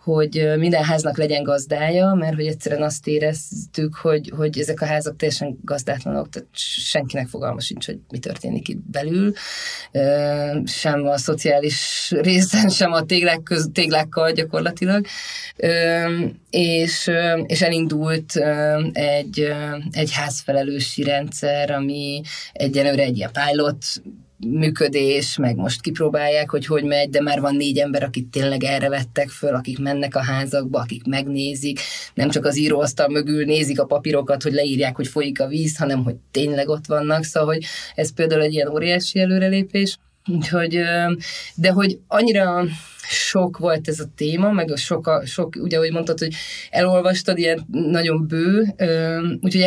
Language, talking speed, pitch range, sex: Hungarian, 145 wpm, 145-170 Hz, female